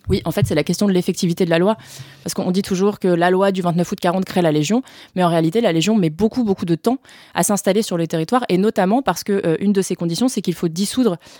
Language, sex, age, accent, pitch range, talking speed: English, female, 20-39, French, 170-210 Hz, 275 wpm